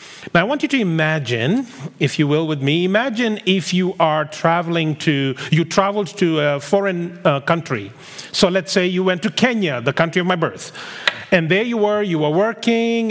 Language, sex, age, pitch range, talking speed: English, male, 40-59, 165-205 Hz, 195 wpm